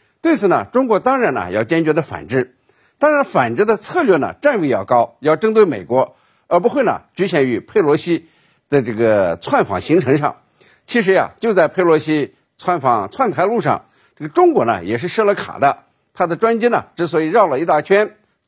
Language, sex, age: Chinese, male, 50-69